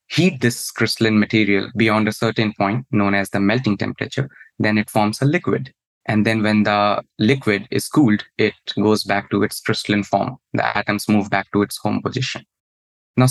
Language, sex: English, male